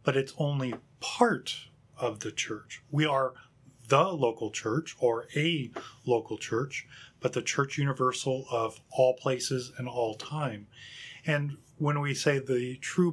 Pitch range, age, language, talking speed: 120-145 Hz, 30-49, English, 145 wpm